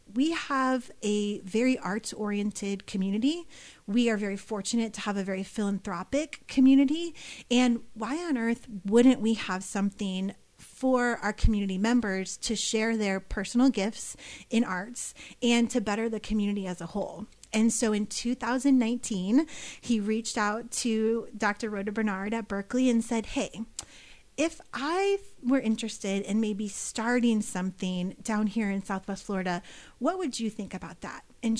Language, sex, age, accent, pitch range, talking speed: English, female, 30-49, American, 195-235 Hz, 150 wpm